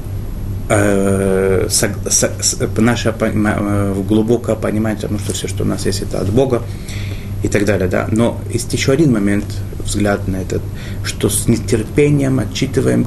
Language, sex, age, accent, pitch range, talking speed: Russian, male, 30-49, native, 100-115 Hz, 135 wpm